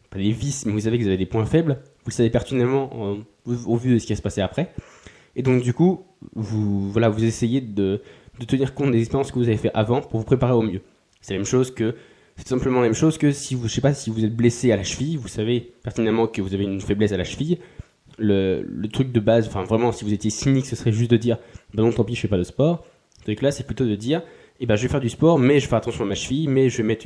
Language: French